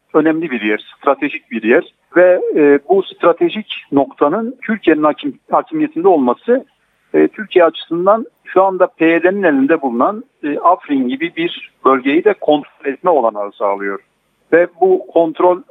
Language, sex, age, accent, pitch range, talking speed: Turkish, male, 60-79, native, 130-215 Hz, 135 wpm